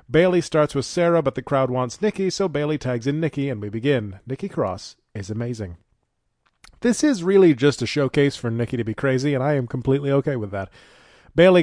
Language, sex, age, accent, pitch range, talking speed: English, male, 40-59, American, 125-175 Hz, 205 wpm